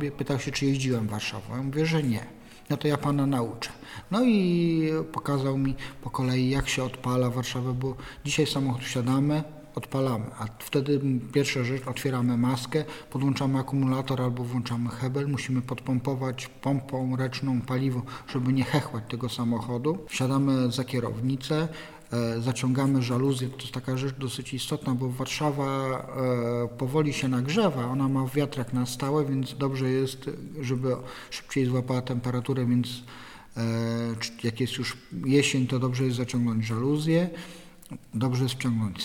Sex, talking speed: male, 145 wpm